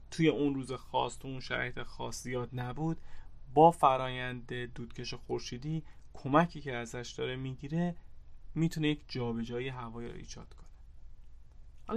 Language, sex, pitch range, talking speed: Persian, male, 110-150 Hz, 135 wpm